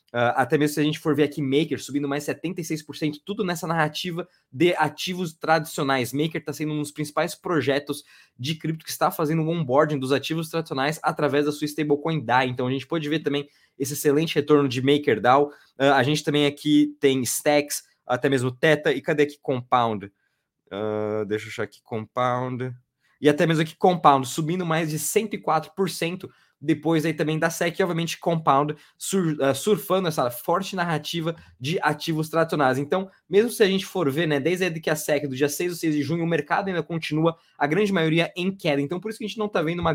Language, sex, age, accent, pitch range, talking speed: Portuguese, male, 20-39, Brazilian, 145-165 Hz, 200 wpm